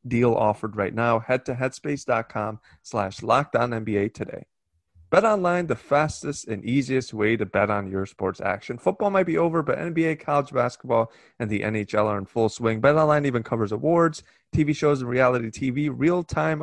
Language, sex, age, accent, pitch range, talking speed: English, male, 20-39, American, 110-140 Hz, 180 wpm